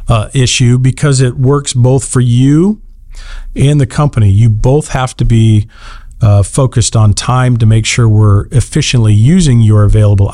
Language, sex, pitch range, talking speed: English, male, 105-125 Hz, 155 wpm